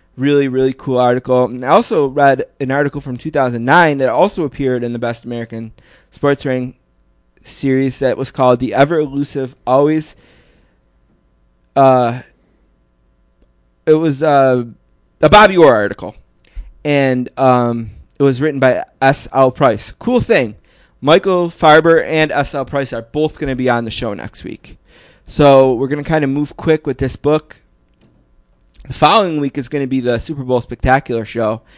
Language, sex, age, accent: English, male, 20-39, American